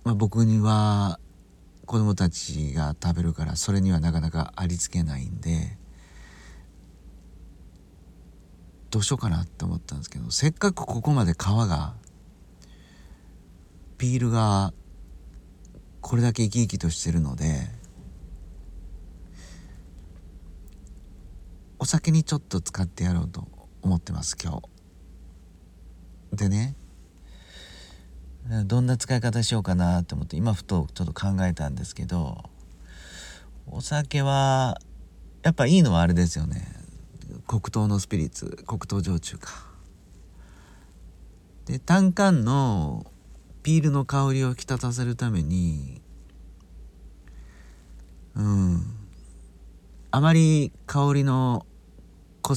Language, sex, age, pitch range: Japanese, male, 40-59, 80-110 Hz